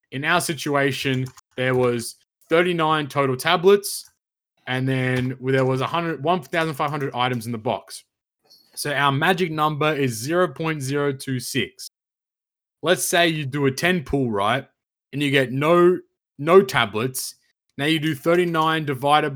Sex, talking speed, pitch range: male, 130 wpm, 130-160 Hz